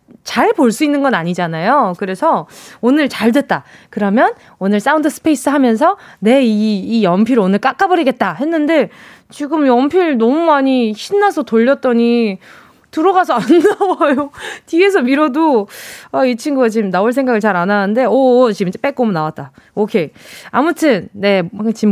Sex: female